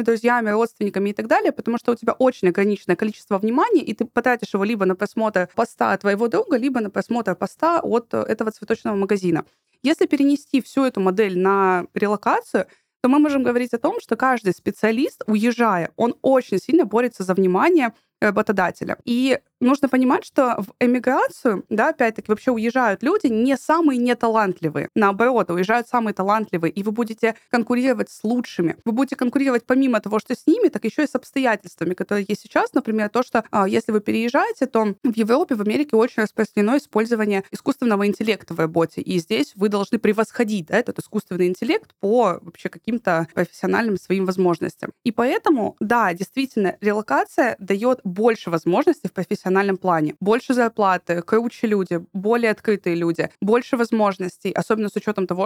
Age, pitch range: 20-39, 190-245 Hz